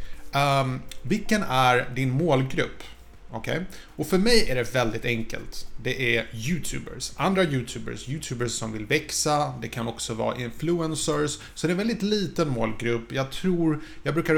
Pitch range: 115-150 Hz